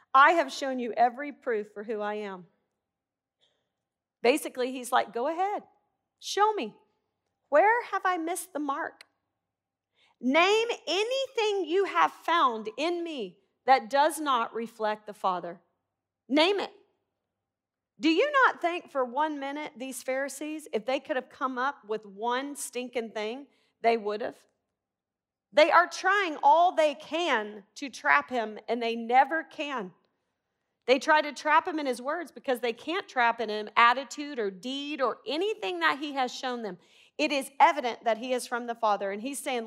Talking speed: 165 wpm